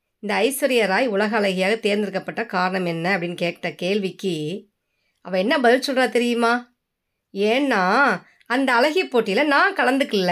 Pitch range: 180-250 Hz